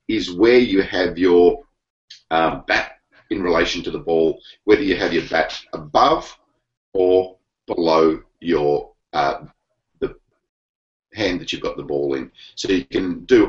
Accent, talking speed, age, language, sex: Australian, 150 wpm, 40-59, English, male